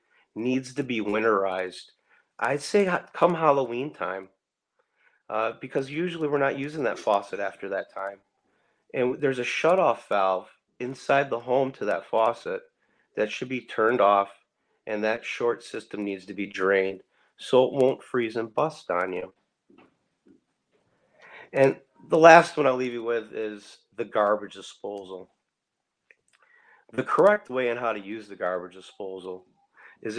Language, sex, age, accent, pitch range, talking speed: English, male, 30-49, American, 105-150 Hz, 150 wpm